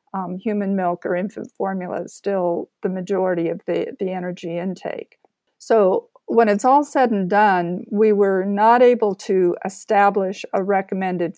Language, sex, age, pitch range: English, female, 50-69, 185-225 Hz